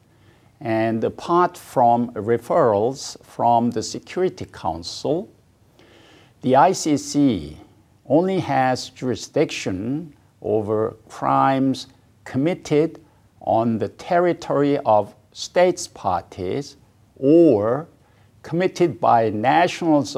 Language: English